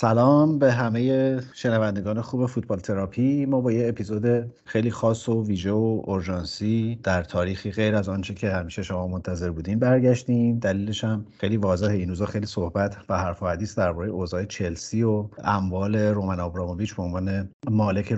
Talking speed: 160 wpm